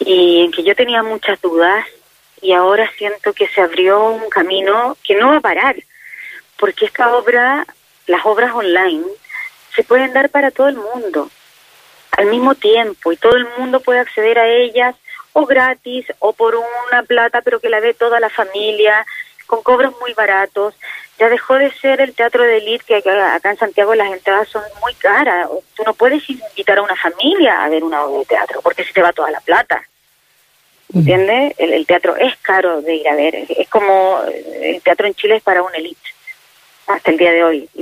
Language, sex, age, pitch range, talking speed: Spanish, female, 30-49, 190-255 Hz, 200 wpm